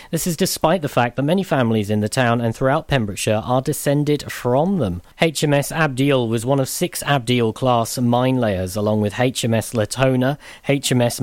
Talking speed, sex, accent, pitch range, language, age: 170 wpm, male, British, 115-145 Hz, English, 40-59